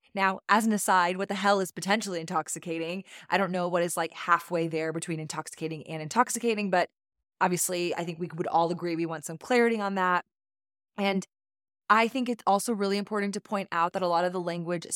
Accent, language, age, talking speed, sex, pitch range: American, English, 20-39, 210 wpm, female, 170-200 Hz